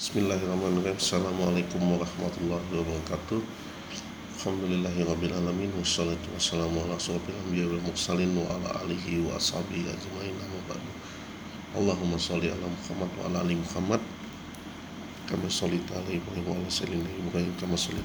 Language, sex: English, male